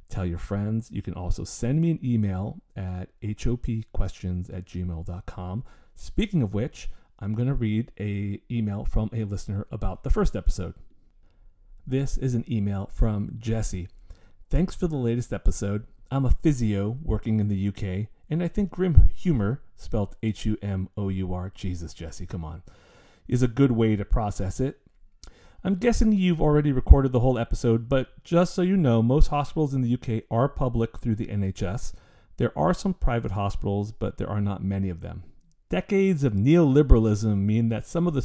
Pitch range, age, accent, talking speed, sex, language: 95-130 Hz, 40-59, American, 170 wpm, male, English